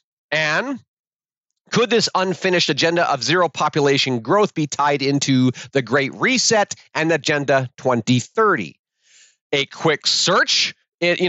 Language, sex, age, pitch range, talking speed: English, male, 40-59, 135-180 Hz, 115 wpm